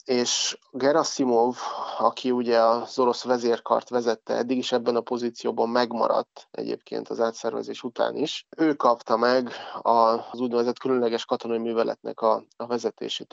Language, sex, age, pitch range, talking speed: Hungarian, male, 30-49, 115-130 Hz, 130 wpm